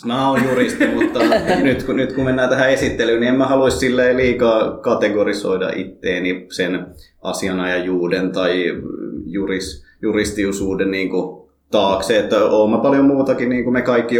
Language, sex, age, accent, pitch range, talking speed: Finnish, male, 20-39, native, 95-115 Hz, 130 wpm